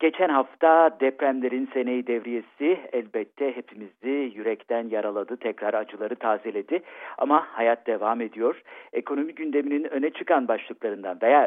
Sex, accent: male, native